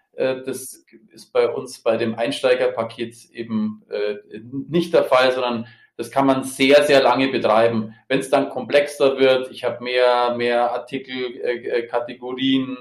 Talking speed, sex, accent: 140 wpm, male, German